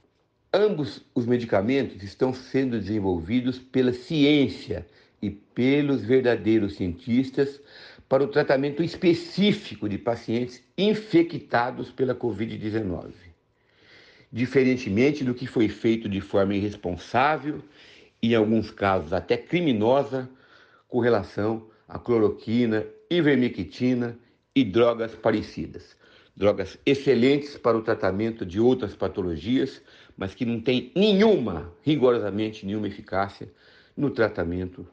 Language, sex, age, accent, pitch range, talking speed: Portuguese, male, 60-79, Brazilian, 105-135 Hz, 105 wpm